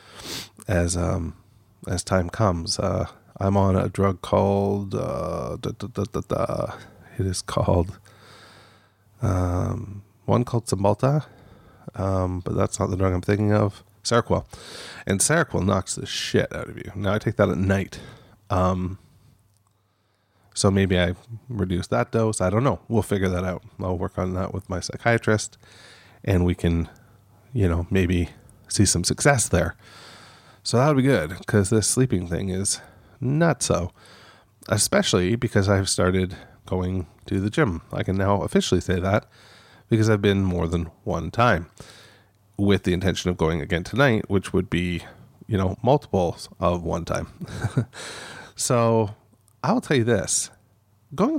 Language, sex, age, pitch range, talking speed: English, male, 30-49, 95-115 Hz, 155 wpm